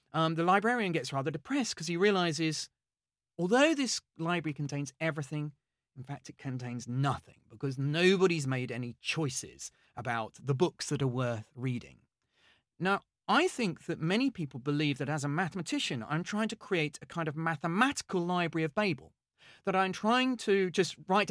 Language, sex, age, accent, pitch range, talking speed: English, male, 40-59, British, 140-200 Hz, 165 wpm